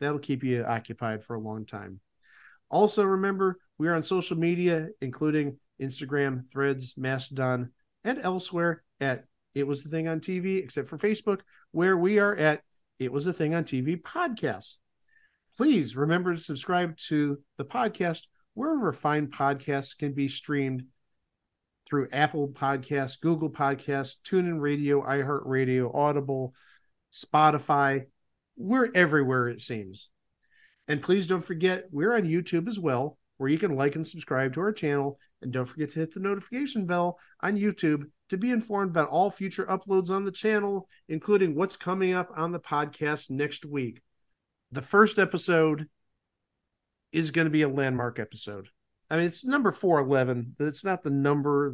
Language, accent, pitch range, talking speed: English, American, 135-180 Hz, 160 wpm